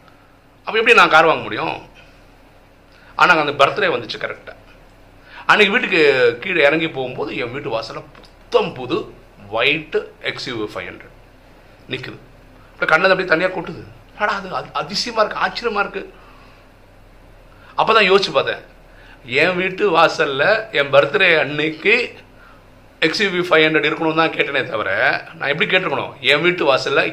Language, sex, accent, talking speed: Tamil, male, native, 125 wpm